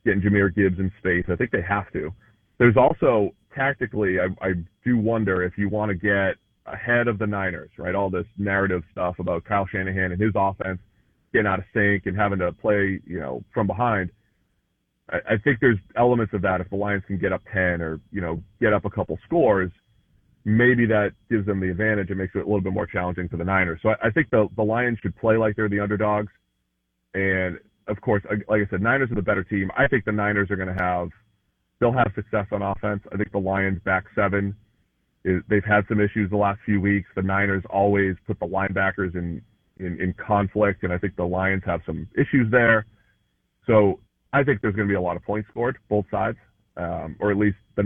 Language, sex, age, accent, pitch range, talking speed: English, male, 30-49, American, 95-110 Hz, 225 wpm